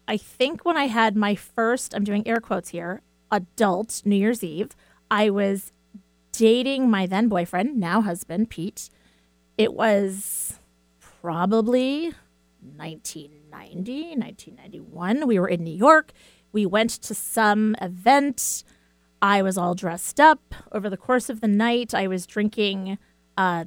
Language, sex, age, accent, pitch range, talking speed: English, female, 30-49, American, 175-225 Hz, 140 wpm